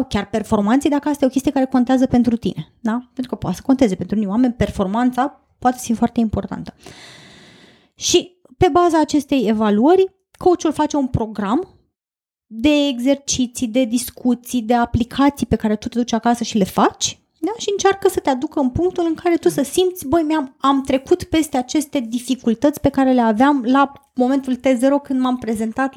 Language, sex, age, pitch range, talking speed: Romanian, female, 20-39, 230-290 Hz, 185 wpm